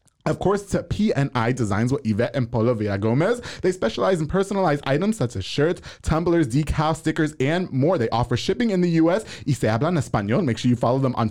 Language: English